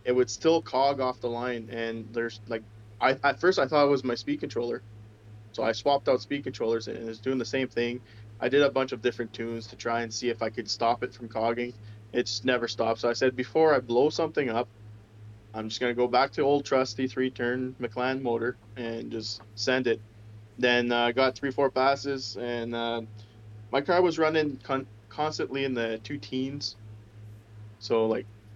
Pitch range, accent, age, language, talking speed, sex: 110-130 Hz, American, 20-39, English, 205 wpm, male